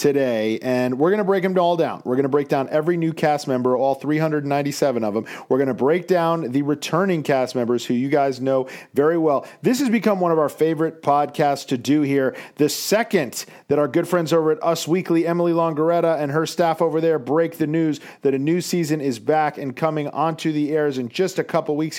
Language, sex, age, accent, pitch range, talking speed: English, male, 40-59, American, 140-170 Hz, 230 wpm